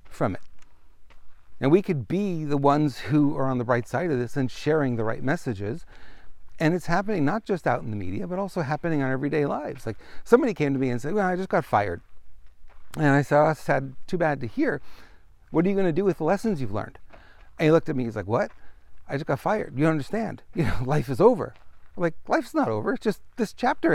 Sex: male